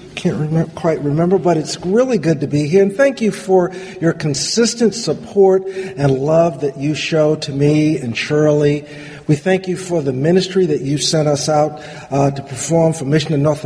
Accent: American